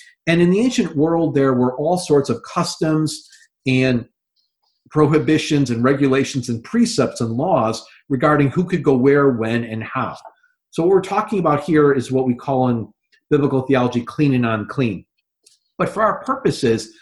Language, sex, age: English, male, 50-69